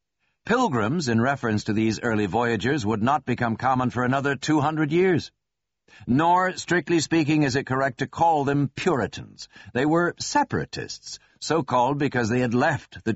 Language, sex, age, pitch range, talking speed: English, male, 60-79, 110-155 Hz, 160 wpm